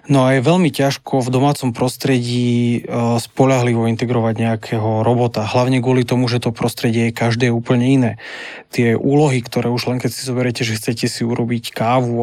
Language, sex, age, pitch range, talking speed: Slovak, male, 20-39, 115-130 Hz, 170 wpm